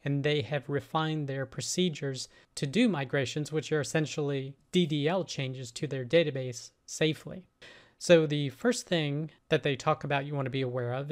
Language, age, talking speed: English, 40-59, 175 wpm